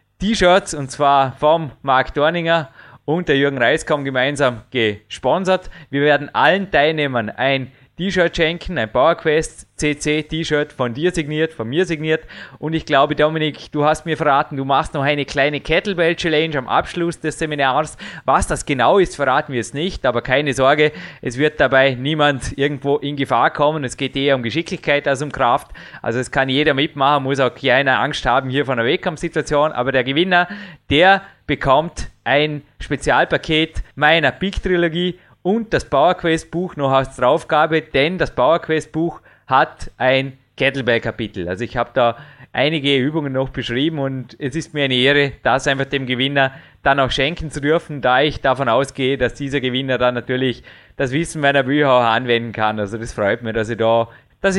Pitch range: 130-155 Hz